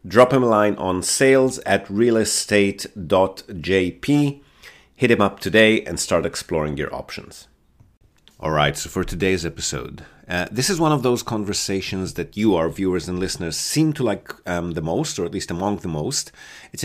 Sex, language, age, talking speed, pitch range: male, English, 30-49, 175 wpm, 90-115 Hz